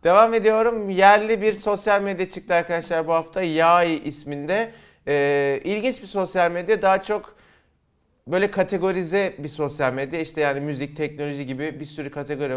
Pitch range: 150-185 Hz